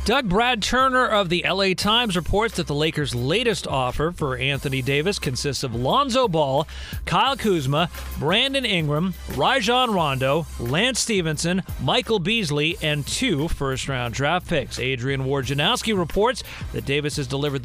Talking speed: 145 wpm